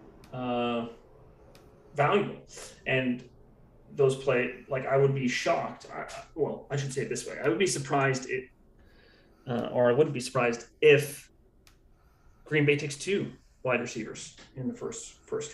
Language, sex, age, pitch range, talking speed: English, male, 30-49, 120-150 Hz, 155 wpm